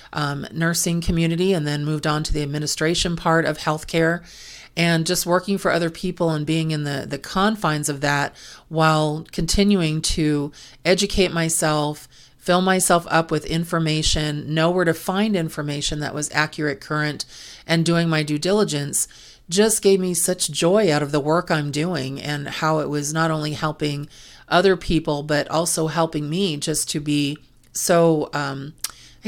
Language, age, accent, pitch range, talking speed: English, 40-59, American, 150-175 Hz, 165 wpm